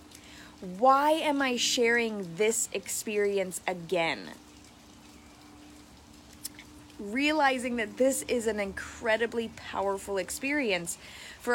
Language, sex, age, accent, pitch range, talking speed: English, female, 20-39, American, 195-260 Hz, 85 wpm